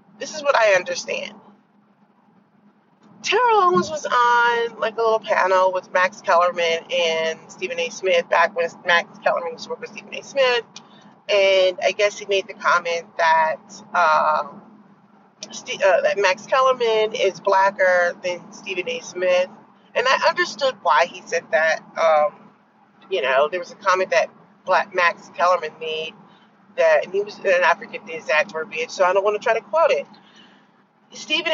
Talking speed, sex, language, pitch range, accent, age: 165 wpm, female, English, 175-225 Hz, American, 30-49